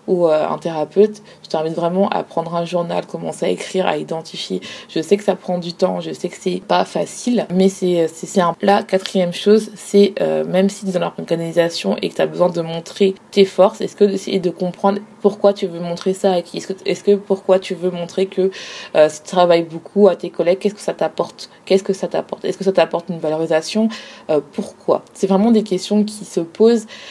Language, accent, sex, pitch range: French, French, female, 175-200 Hz